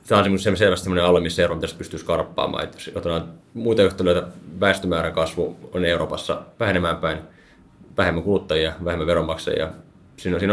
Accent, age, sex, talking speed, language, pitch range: native, 20-39, male, 140 wpm, Finnish, 85-95 Hz